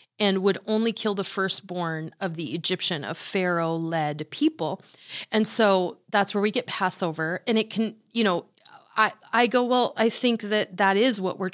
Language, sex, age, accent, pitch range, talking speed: English, female, 30-49, American, 180-215 Hz, 180 wpm